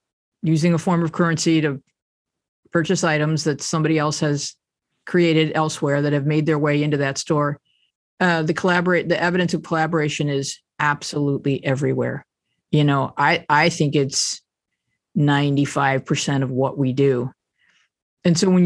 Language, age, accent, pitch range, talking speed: English, 40-59, American, 140-170 Hz, 150 wpm